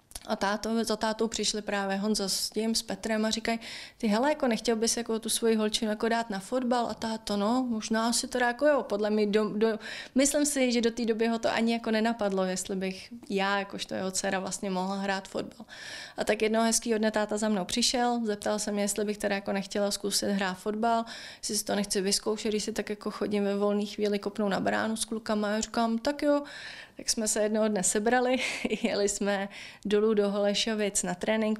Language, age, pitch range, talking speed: Czech, 20-39, 205-230 Hz, 215 wpm